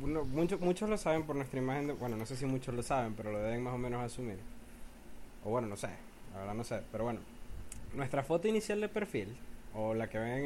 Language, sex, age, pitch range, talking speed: Spanish, male, 20-39, 115-155 Hz, 225 wpm